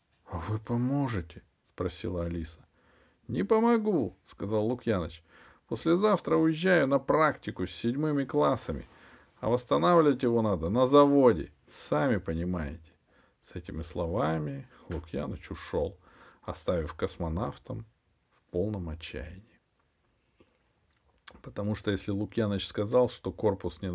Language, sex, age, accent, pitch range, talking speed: Russian, male, 50-69, native, 85-125 Hz, 105 wpm